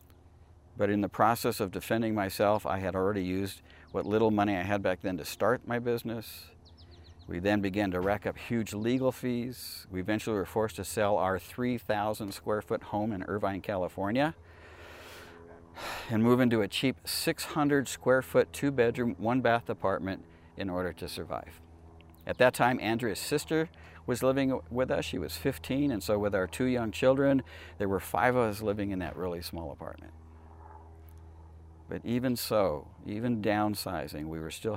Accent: American